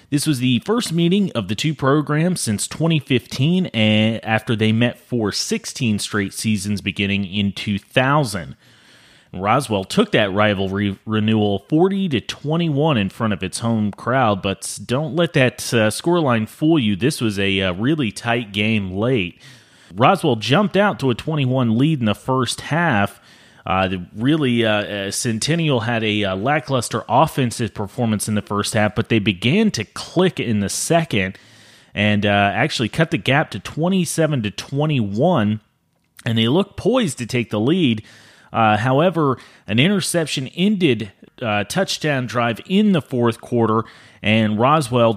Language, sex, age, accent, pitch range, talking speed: English, male, 30-49, American, 105-150 Hz, 155 wpm